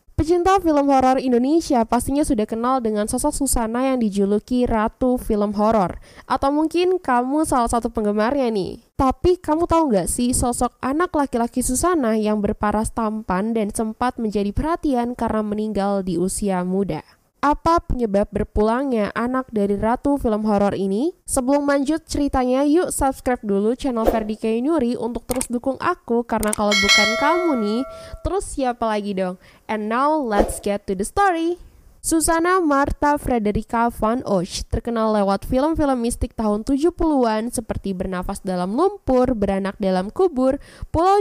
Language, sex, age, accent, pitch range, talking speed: Indonesian, female, 10-29, native, 210-280 Hz, 145 wpm